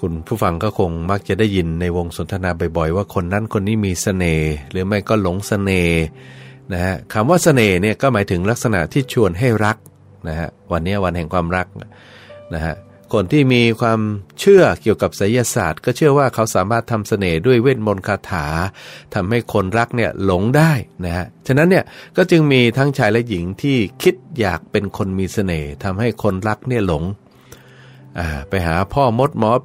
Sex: male